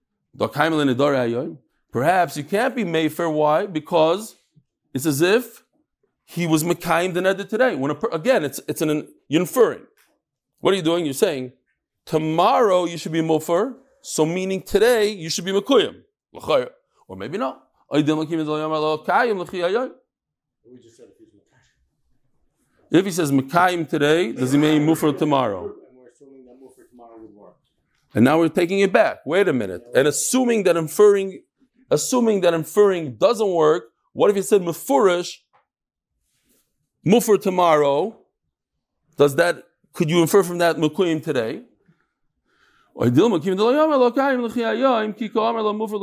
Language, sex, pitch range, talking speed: English, male, 155-220 Hz, 115 wpm